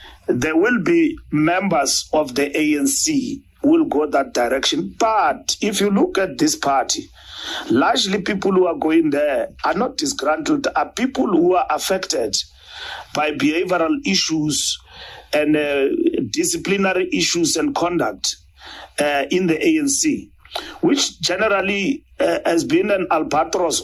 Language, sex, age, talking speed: English, male, 40-59, 135 wpm